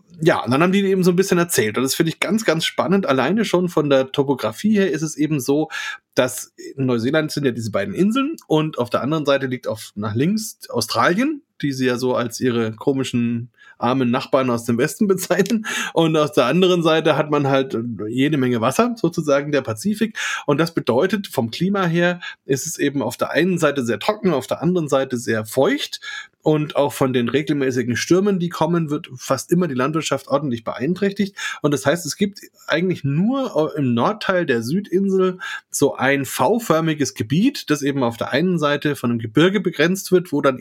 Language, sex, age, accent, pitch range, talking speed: German, male, 30-49, German, 130-185 Hz, 200 wpm